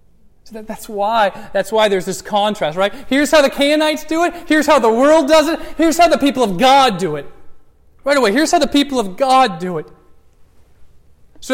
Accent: American